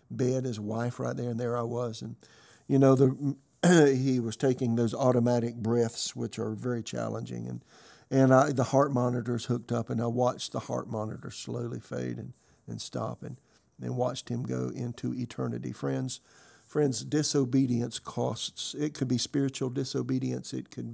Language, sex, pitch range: English, male, 120-145 Hz